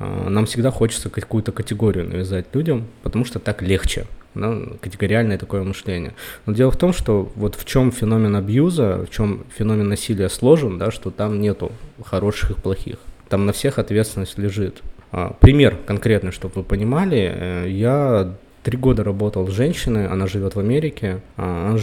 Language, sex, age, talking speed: Russian, male, 20-39, 160 wpm